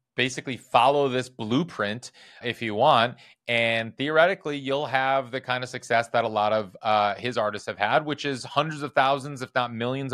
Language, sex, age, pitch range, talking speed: English, male, 30-49, 110-130 Hz, 190 wpm